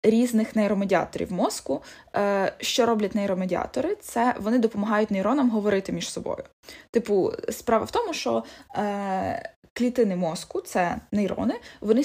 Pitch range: 200-245 Hz